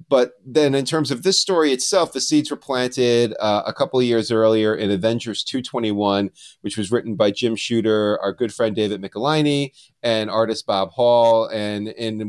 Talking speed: 185 wpm